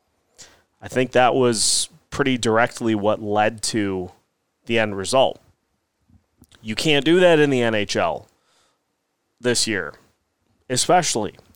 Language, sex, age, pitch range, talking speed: English, male, 30-49, 100-135 Hz, 115 wpm